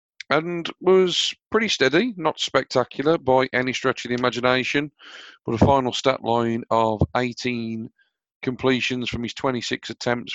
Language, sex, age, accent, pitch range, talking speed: English, male, 40-59, British, 110-125 Hz, 140 wpm